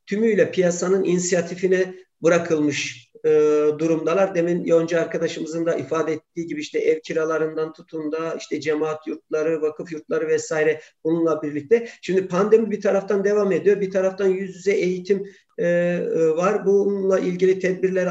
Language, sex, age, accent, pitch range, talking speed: Turkish, male, 50-69, native, 165-205 Hz, 140 wpm